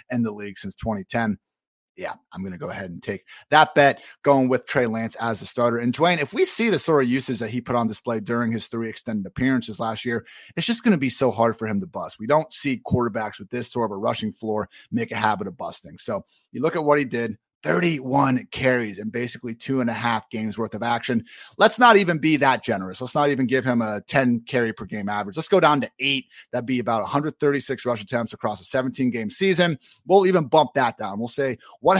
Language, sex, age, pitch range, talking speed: English, male, 30-49, 115-140 Hz, 245 wpm